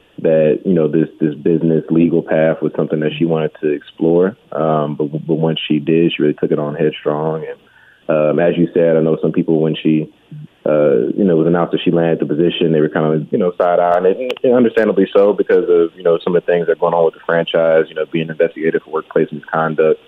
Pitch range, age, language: 75-85 Hz, 30-49, English